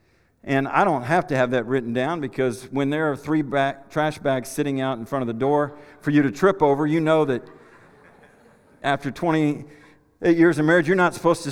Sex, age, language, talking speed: male, 50-69, English, 210 wpm